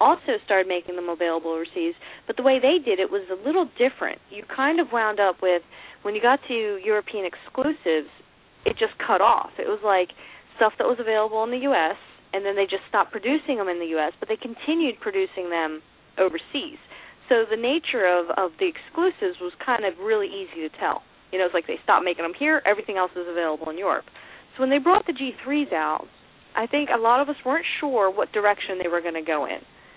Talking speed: 220 wpm